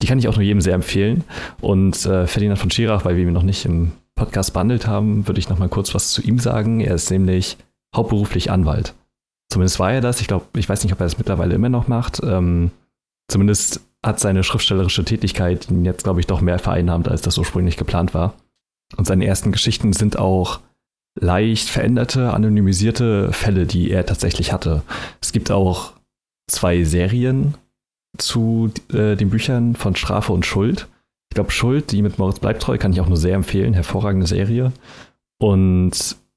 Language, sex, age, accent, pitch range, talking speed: German, male, 30-49, German, 90-115 Hz, 185 wpm